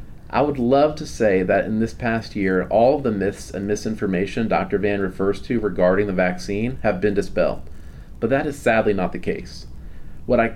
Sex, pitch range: male, 95-130 Hz